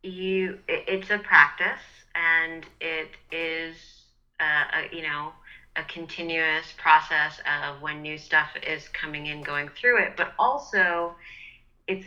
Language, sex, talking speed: English, female, 130 wpm